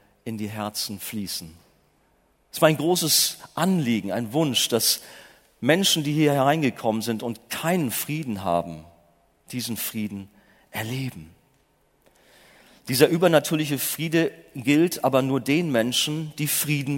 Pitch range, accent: 110-165 Hz, German